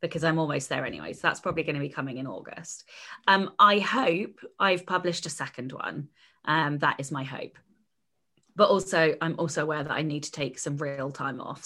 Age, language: 20-39, English